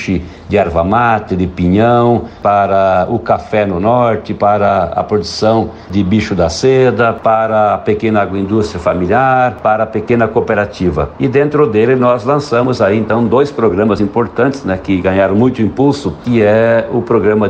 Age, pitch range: 60-79, 95-115 Hz